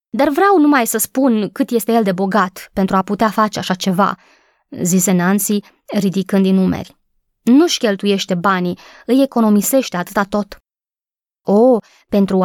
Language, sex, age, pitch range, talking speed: Romanian, female, 20-39, 195-270 Hz, 145 wpm